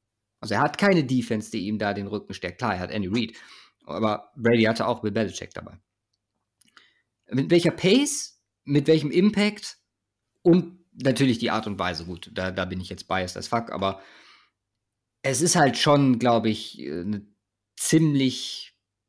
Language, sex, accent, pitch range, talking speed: German, male, German, 105-140 Hz, 165 wpm